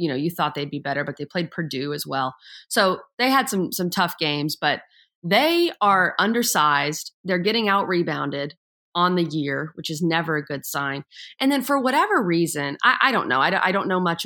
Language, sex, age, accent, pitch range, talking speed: English, female, 30-49, American, 150-180 Hz, 215 wpm